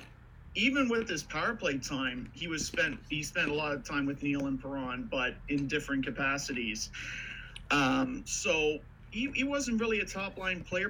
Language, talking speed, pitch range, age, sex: English, 180 wpm, 130-160 Hz, 40-59, male